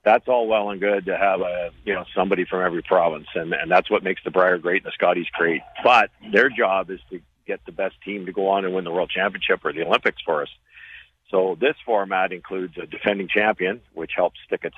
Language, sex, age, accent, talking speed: English, male, 50-69, American, 240 wpm